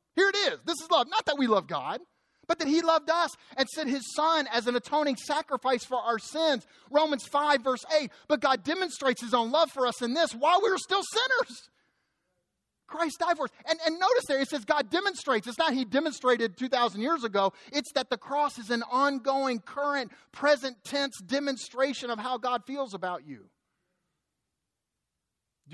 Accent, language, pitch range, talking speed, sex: American, English, 180-285 Hz, 195 wpm, male